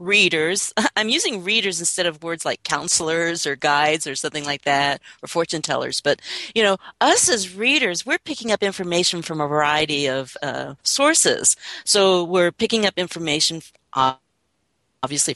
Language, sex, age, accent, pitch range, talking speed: English, female, 40-59, American, 155-200 Hz, 155 wpm